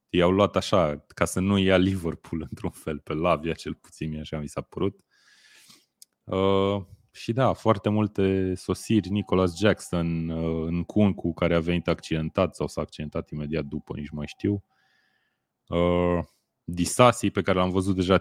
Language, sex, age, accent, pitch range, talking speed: Romanian, male, 30-49, native, 80-95 Hz, 160 wpm